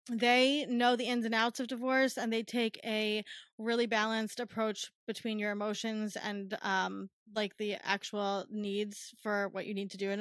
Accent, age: American, 20-39